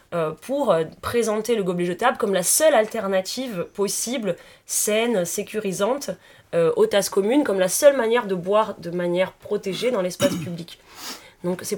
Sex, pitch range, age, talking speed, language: female, 180-230 Hz, 30-49, 165 wpm, French